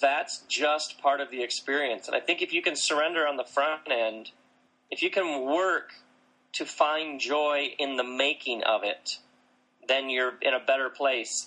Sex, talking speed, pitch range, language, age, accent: male, 185 wpm, 120-150 Hz, English, 30-49, American